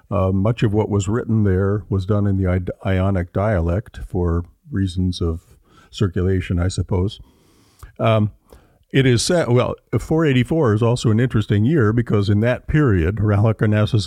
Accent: American